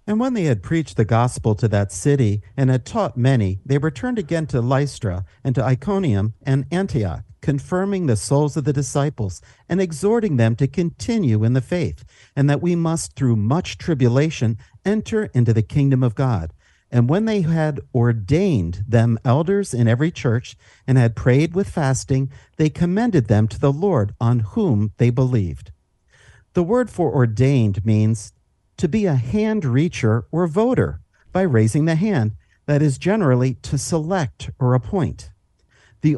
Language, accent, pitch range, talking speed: English, American, 115-165 Hz, 165 wpm